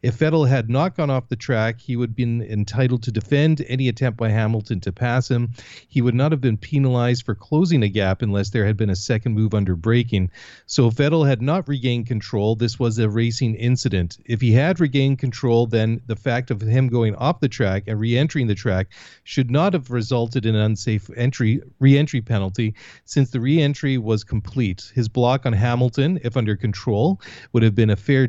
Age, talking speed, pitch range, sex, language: 40-59, 210 wpm, 110-130 Hz, male, English